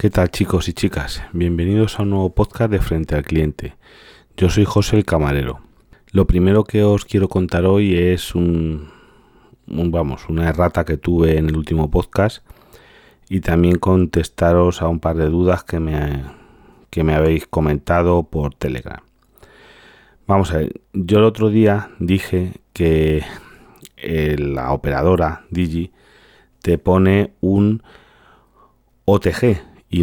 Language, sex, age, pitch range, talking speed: Spanish, male, 30-49, 80-95 Hz, 140 wpm